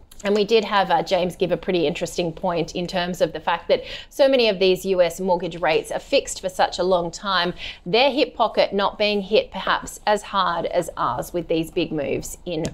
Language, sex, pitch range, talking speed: English, female, 175-225 Hz, 220 wpm